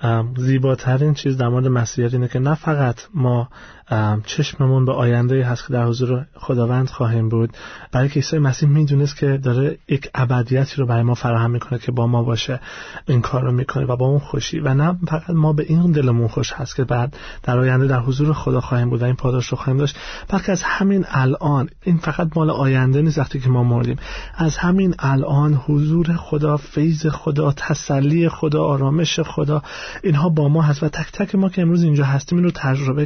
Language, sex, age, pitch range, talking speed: Persian, male, 30-49, 130-160 Hz, 195 wpm